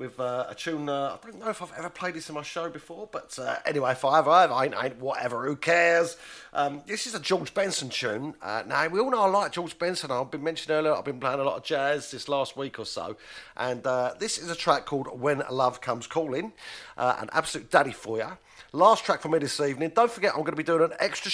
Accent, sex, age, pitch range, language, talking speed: British, male, 40-59, 150-210 Hz, English, 260 wpm